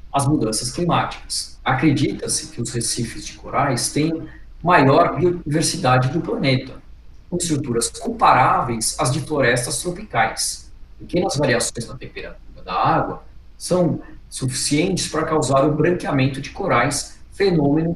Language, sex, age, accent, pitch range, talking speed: Portuguese, male, 50-69, Brazilian, 115-160 Hz, 120 wpm